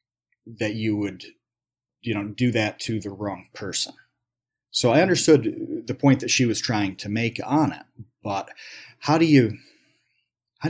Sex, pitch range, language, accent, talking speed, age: male, 110-145 Hz, English, American, 165 wpm, 30-49